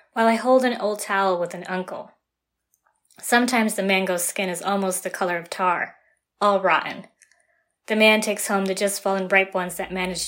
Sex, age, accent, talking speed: female, 20-39, American, 180 wpm